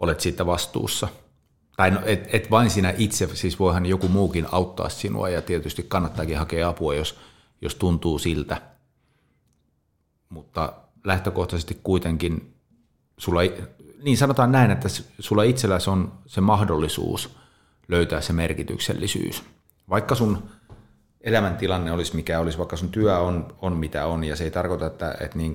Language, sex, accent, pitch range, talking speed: Finnish, male, native, 80-95 Hz, 145 wpm